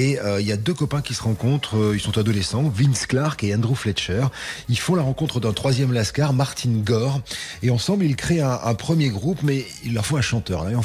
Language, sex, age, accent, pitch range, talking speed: French, male, 40-59, French, 95-135 Hz, 250 wpm